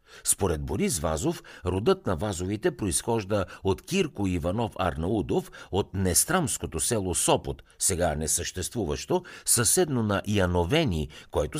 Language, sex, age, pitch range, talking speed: Bulgarian, male, 60-79, 85-115 Hz, 110 wpm